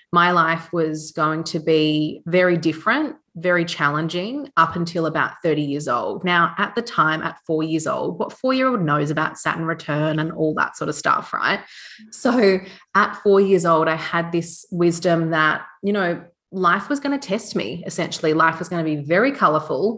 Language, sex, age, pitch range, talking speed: English, female, 30-49, 160-180 Hz, 190 wpm